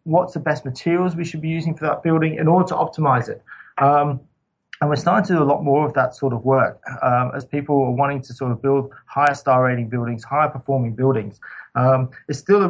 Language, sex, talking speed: English, male, 235 wpm